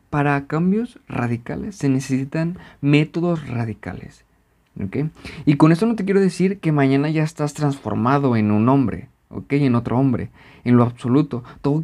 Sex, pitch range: male, 125-160 Hz